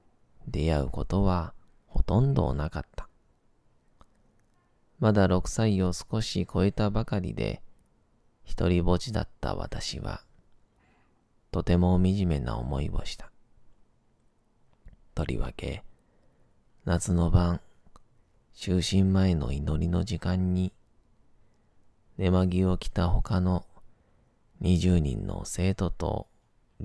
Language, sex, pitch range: Japanese, male, 85-100 Hz